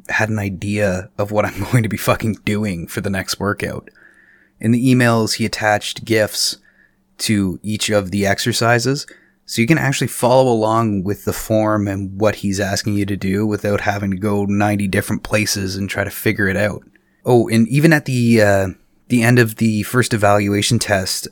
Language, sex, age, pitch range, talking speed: English, male, 20-39, 100-120 Hz, 190 wpm